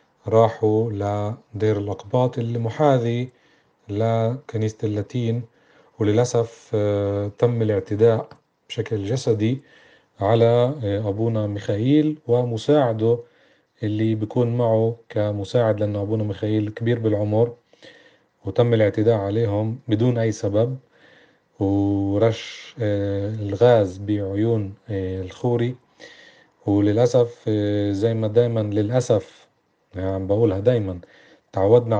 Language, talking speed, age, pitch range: Arabic, 85 wpm, 40-59, 100-120 Hz